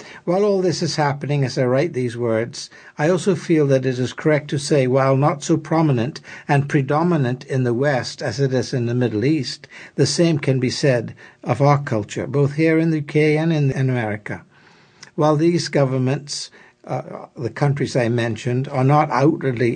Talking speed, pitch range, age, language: 190 wpm, 125-150 Hz, 60-79, English